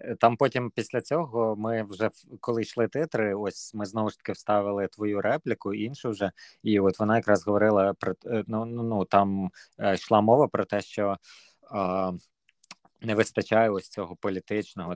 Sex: male